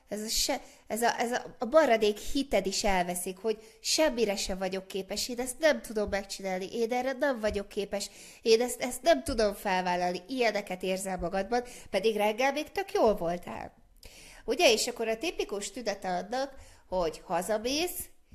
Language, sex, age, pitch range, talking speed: Hungarian, female, 30-49, 190-240 Hz, 165 wpm